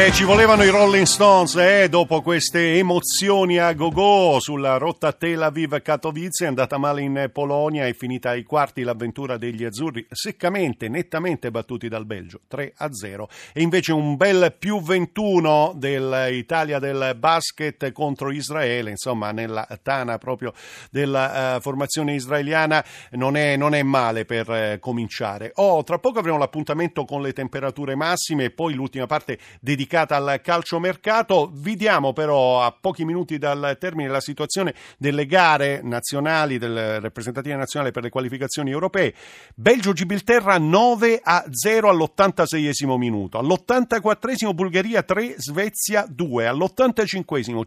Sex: male